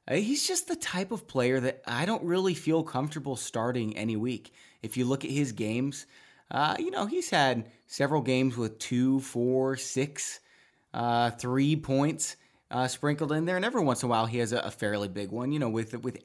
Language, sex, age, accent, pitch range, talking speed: English, male, 20-39, American, 115-160 Hz, 205 wpm